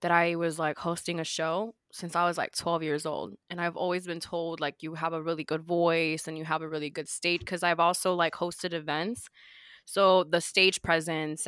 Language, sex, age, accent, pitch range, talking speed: English, female, 20-39, American, 165-190 Hz, 225 wpm